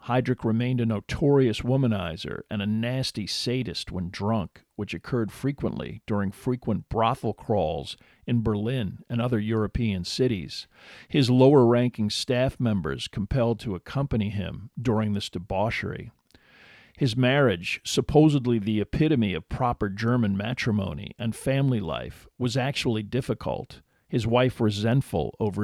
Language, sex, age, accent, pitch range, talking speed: English, male, 50-69, American, 105-130 Hz, 125 wpm